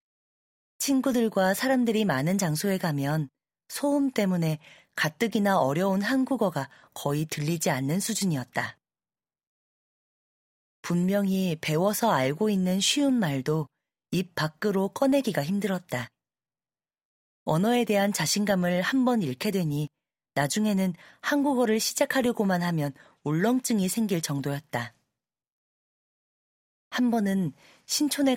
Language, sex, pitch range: Korean, female, 150-215 Hz